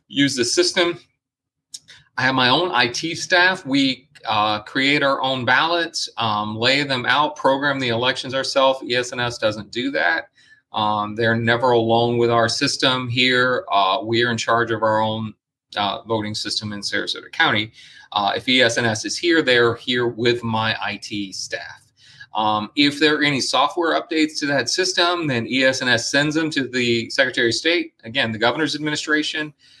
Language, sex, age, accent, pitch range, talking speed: English, male, 30-49, American, 110-135 Hz, 165 wpm